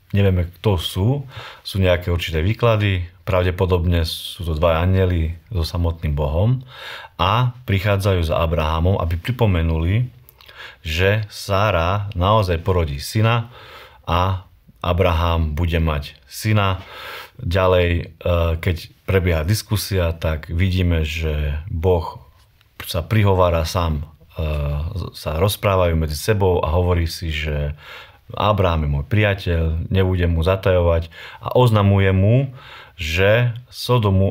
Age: 30-49